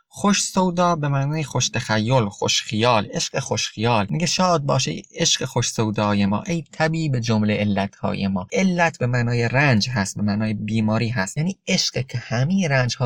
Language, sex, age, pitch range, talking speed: Persian, male, 30-49, 120-165 Hz, 170 wpm